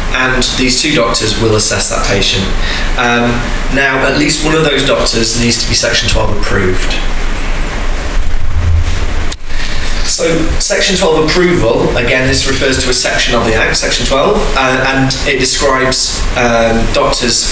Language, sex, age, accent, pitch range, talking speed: English, male, 20-39, British, 100-125 Hz, 145 wpm